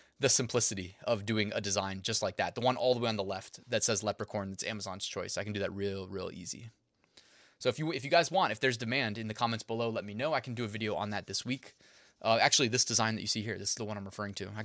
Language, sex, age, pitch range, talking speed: English, male, 20-39, 105-135 Hz, 295 wpm